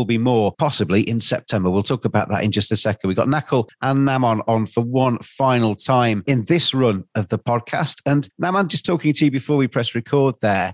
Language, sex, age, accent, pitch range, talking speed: English, male, 40-59, British, 110-130 Hz, 225 wpm